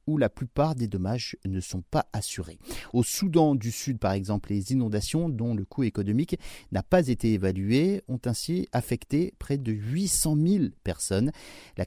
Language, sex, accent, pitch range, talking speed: French, male, French, 100-135 Hz, 170 wpm